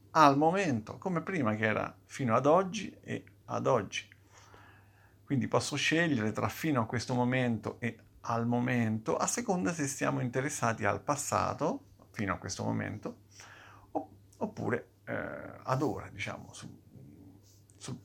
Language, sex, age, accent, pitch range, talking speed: Italian, male, 50-69, native, 105-130 Hz, 135 wpm